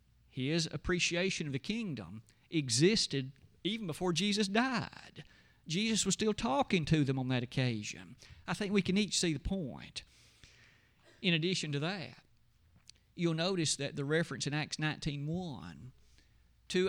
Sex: male